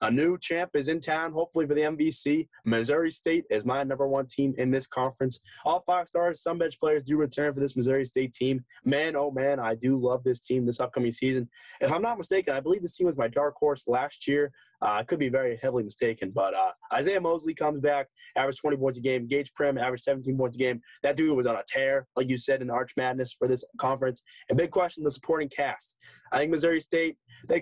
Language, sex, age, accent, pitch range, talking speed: English, male, 20-39, American, 130-165 Hz, 235 wpm